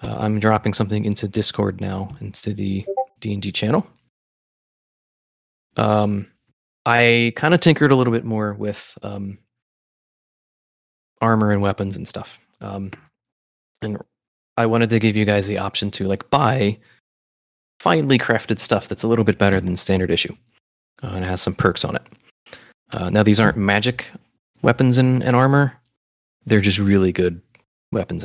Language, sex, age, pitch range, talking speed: English, male, 20-39, 95-115 Hz, 155 wpm